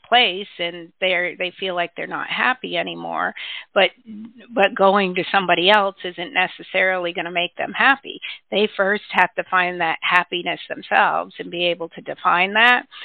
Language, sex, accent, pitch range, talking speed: English, female, American, 170-190 Hz, 170 wpm